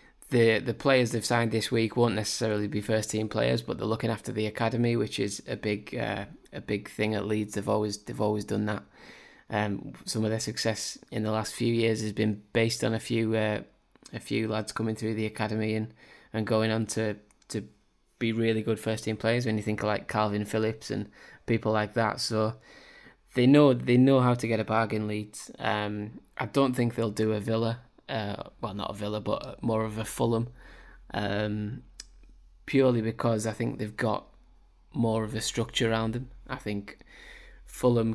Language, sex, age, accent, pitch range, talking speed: English, male, 10-29, British, 105-120 Hz, 200 wpm